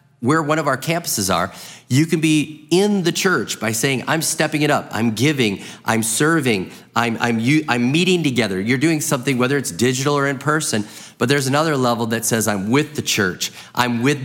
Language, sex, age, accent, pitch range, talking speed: English, male, 40-59, American, 115-155 Hz, 200 wpm